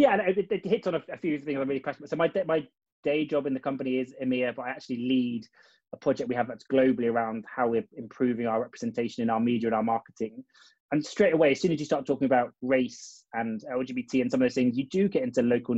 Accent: British